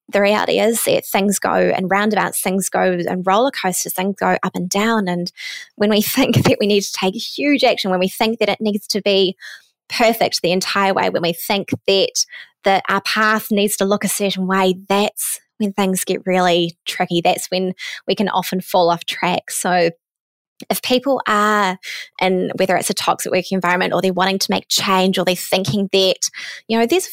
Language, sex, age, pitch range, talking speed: English, female, 20-39, 185-220 Hz, 205 wpm